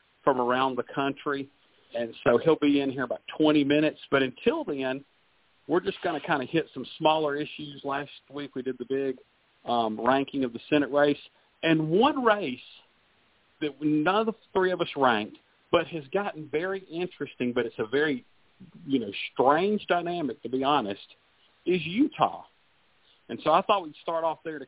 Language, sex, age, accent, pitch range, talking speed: English, male, 50-69, American, 130-170 Hz, 185 wpm